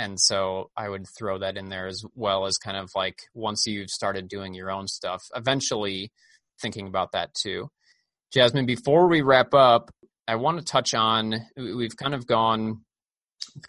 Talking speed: 175 wpm